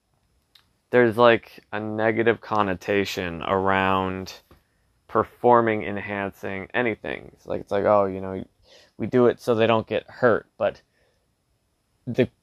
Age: 20-39